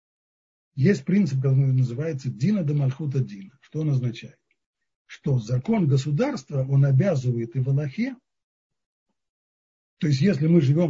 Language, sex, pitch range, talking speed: Russian, male, 125-160 Hz, 130 wpm